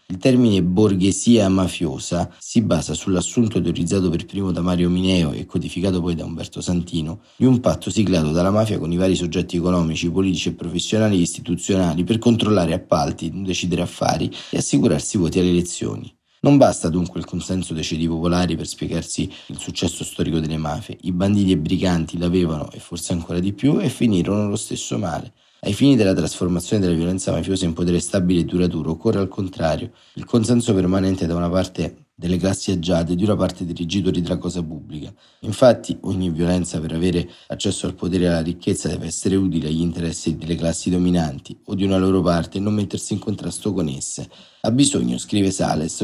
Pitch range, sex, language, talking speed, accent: 85-100 Hz, male, Italian, 185 wpm, native